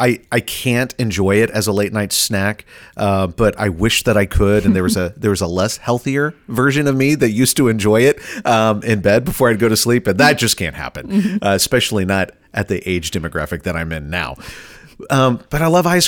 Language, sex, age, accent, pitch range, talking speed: English, male, 40-59, American, 90-120 Hz, 235 wpm